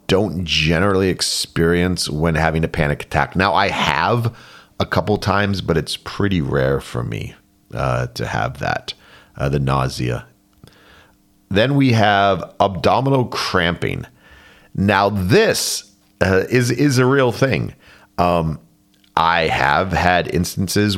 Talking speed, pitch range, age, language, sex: 130 wpm, 80-105 Hz, 40-59, English, male